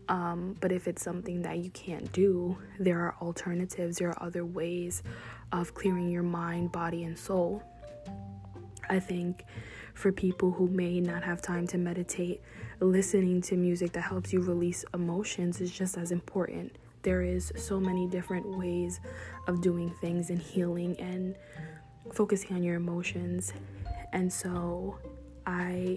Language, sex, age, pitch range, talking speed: English, female, 20-39, 170-185 Hz, 150 wpm